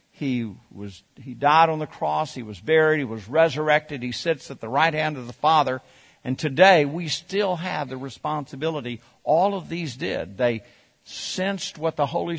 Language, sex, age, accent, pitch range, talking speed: English, male, 50-69, American, 110-150 Hz, 185 wpm